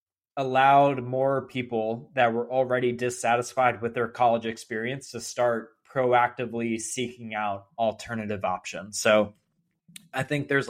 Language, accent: English, American